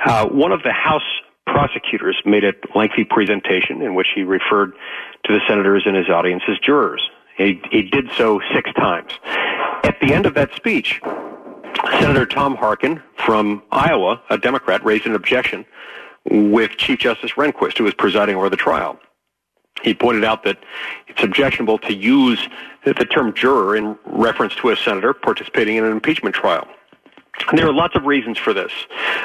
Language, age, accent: English, 50-69, American